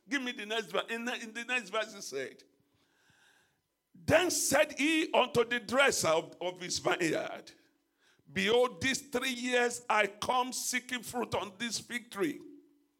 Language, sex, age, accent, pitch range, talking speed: English, male, 50-69, Nigerian, 210-260 Hz, 150 wpm